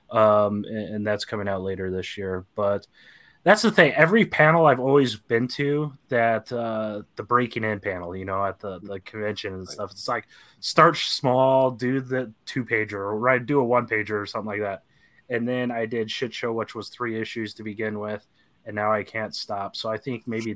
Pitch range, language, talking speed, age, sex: 100-125 Hz, English, 205 wpm, 20-39, male